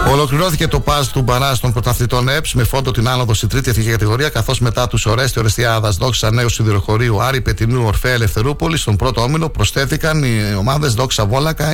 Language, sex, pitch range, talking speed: Greek, male, 105-135 Hz, 185 wpm